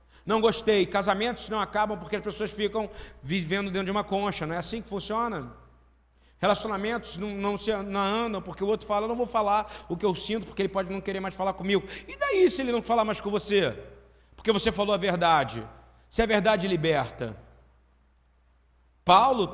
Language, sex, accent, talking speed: Portuguese, male, Brazilian, 195 wpm